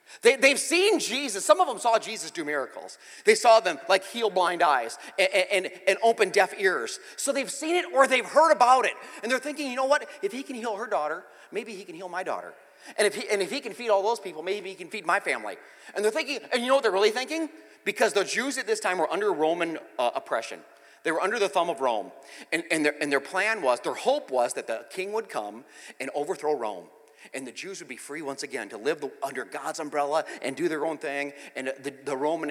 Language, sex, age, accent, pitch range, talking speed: English, male, 40-59, American, 190-310 Hz, 250 wpm